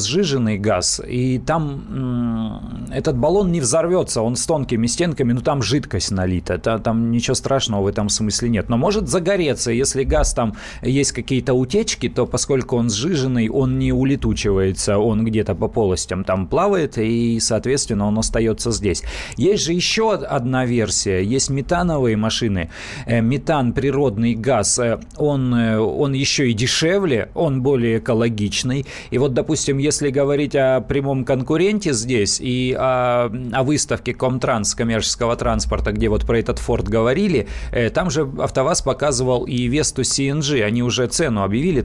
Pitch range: 115-140 Hz